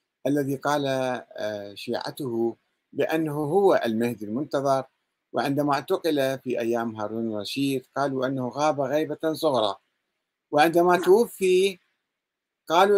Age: 50-69